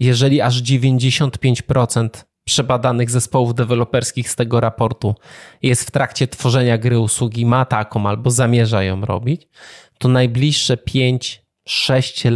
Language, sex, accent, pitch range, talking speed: Polish, male, native, 120-140 Hz, 105 wpm